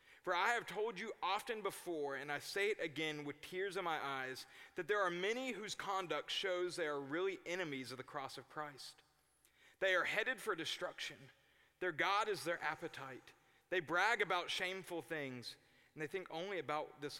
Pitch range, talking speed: 140-190 Hz, 190 wpm